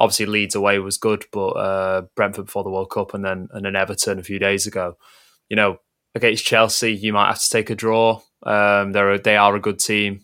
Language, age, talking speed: English, 20-39, 235 wpm